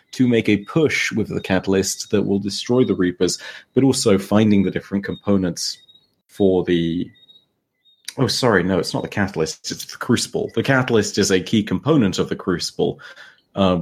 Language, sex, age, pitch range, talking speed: English, male, 30-49, 90-115 Hz, 175 wpm